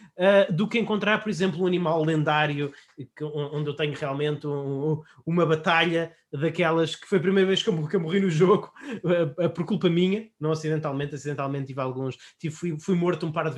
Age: 20-39